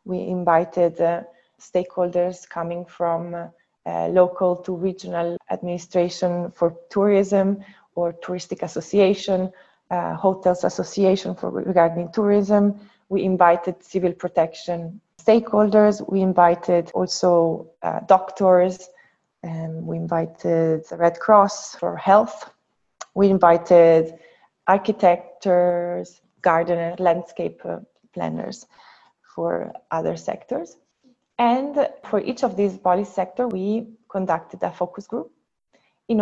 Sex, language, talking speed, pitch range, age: female, English, 105 wpm, 175-205 Hz, 20-39